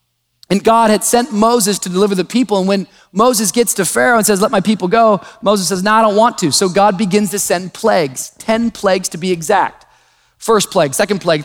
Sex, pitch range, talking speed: male, 175-220 Hz, 225 wpm